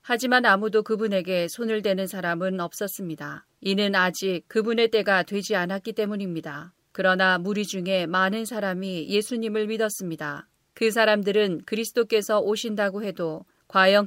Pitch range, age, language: 185-215 Hz, 40-59, Korean